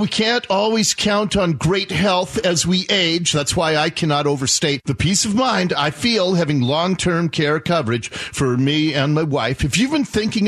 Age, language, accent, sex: 40-59, English, American, male